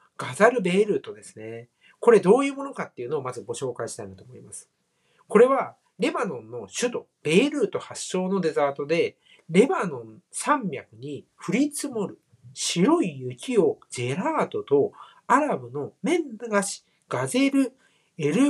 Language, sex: Japanese, male